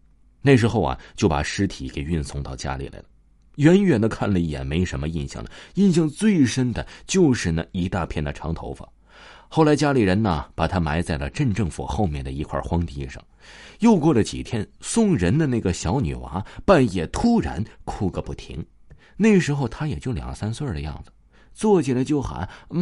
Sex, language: male, Chinese